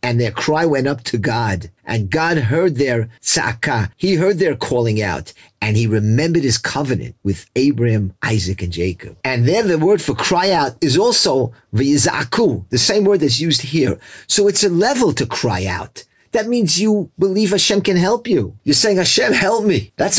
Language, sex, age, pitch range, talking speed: English, male, 40-59, 115-180 Hz, 190 wpm